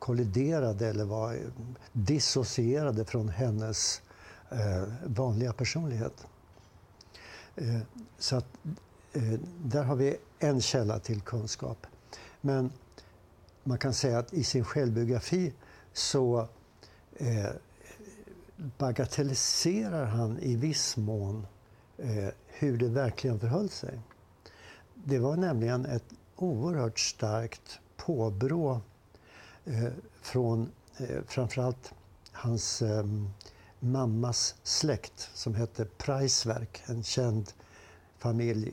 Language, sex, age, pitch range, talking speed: Swedish, male, 60-79, 105-130 Hz, 85 wpm